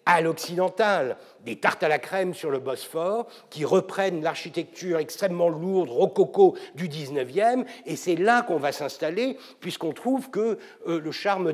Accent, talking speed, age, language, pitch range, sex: French, 155 wpm, 60-79, French, 160-235 Hz, male